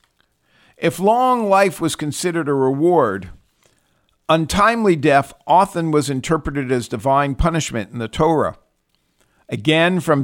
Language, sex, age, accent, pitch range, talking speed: English, male, 50-69, American, 135-175 Hz, 115 wpm